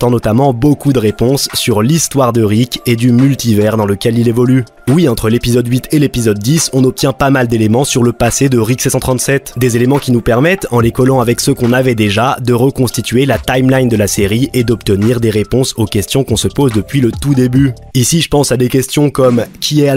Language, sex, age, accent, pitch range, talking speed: French, male, 20-39, French, 120-140 Hz, 230 wpm